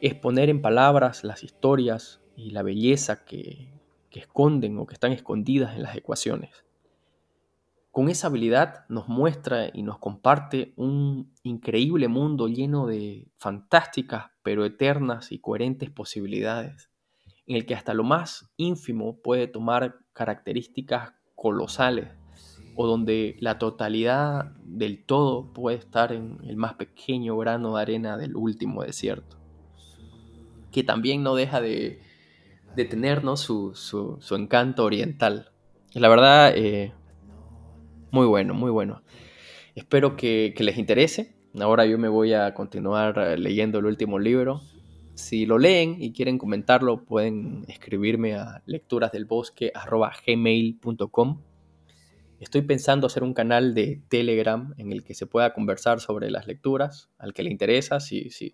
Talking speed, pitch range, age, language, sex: 135 wpm, 105-130 Hz, 20-39, Spanish, male